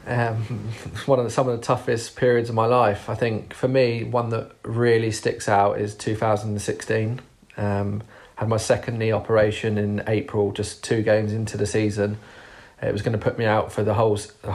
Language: English